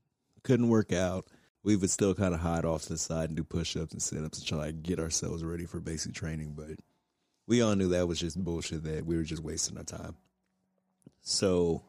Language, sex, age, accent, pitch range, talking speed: English, male, 30-49, American, 80-90 Hz, 210 wpm